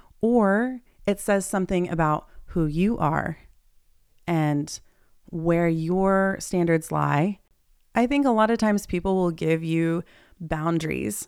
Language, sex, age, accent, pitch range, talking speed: English, female, 30-49, American, 165-200 Hz, 130 wpm